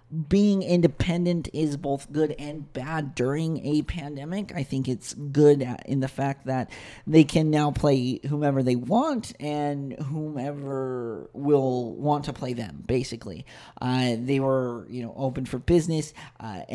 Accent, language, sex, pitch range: American, English, male, 130-170 Hz